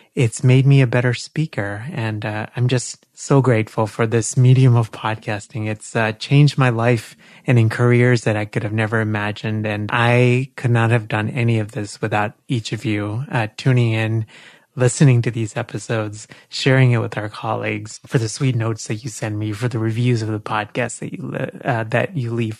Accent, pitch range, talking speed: American, 110-140 Hz, 200 wpm